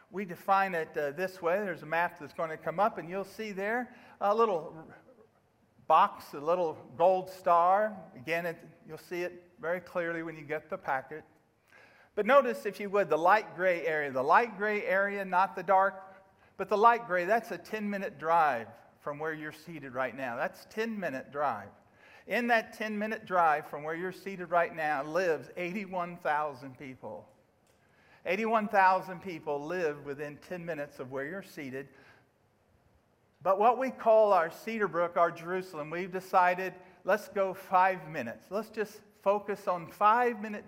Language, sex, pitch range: English, male, 155-200 Hz